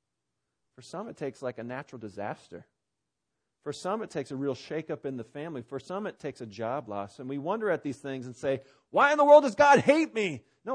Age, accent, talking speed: 40-59, American, 235 wpm